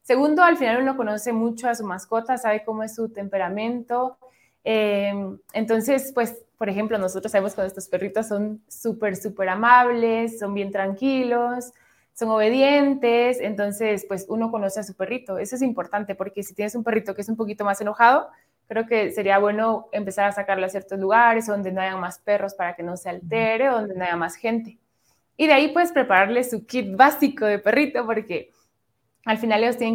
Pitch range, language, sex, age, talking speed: 195-235 Hz, Spanish, female, 20-39, 190 wpm